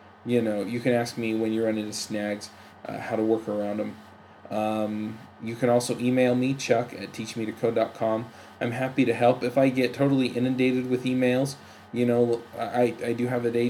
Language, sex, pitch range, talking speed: English, male, 110-125 Hz, 195 wpm